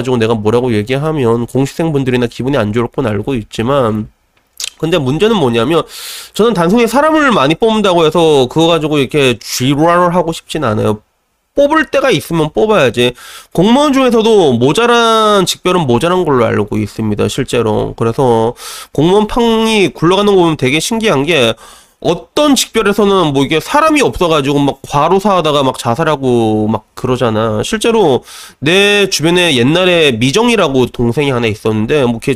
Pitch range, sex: 115-185 Hz, male